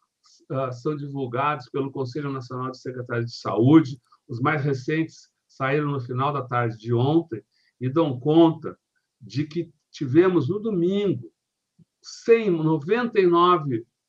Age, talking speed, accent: 60-79, 120 wpm, Brazilian